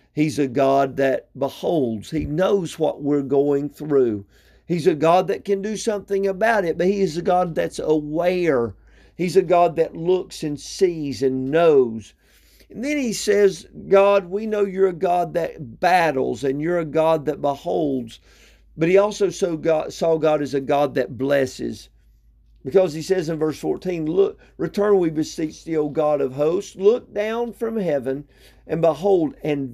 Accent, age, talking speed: American, 50-69, 175 wpm